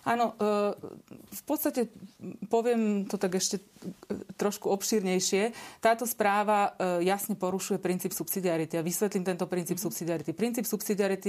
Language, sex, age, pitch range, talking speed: Slovak, female, 30-49, 185-210 Hz, 115 wpm